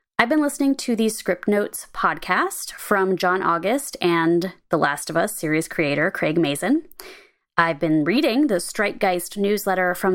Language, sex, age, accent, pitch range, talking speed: English, female, 20-39, American, 165-240 Hz, 165 wpm